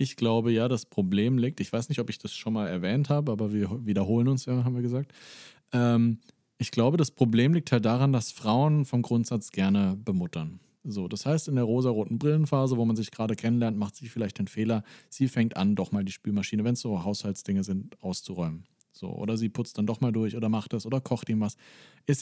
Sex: male